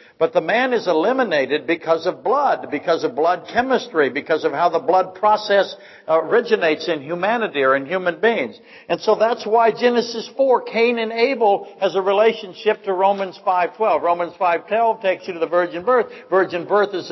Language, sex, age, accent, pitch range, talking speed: English, male, 60-79, American, 155-225 Hz, 180 wpm